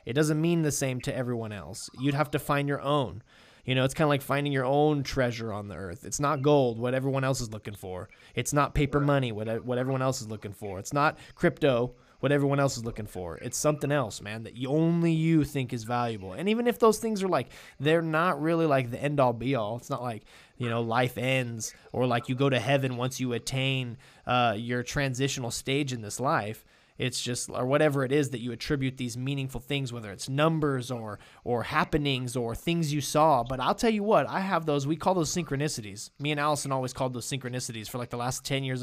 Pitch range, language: 125-160 Hz, English